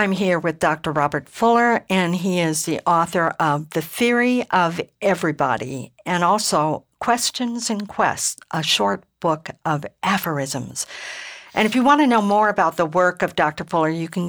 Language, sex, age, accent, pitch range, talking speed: English, female, 60-79, American, 160-200 Hz, 170 wpm